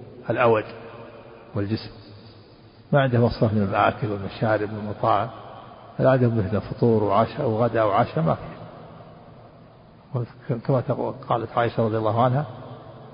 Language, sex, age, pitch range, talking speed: Arabic, male, 50-69, 115-135 Hz, 100 wpm